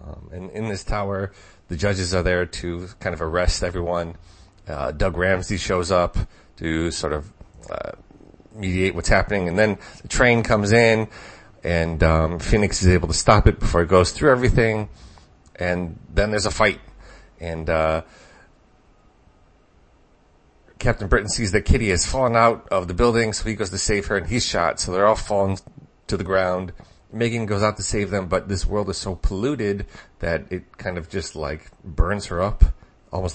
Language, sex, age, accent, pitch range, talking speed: English, male, 30-49, American, 85-105 Hz, 180 wpm